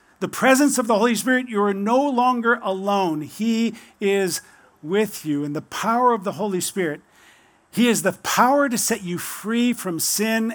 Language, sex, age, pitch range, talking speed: English, male, 50-69, 165-205 Hz, 180 wpm